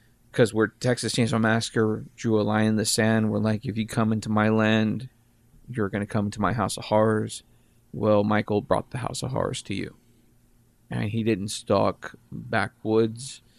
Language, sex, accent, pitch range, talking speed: English, male, American, 110-120 Hz, 185 wpm